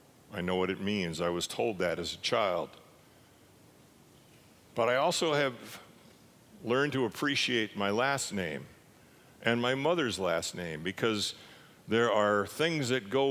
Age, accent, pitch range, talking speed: 50-69, American, 95-120 Hz, 150 wpm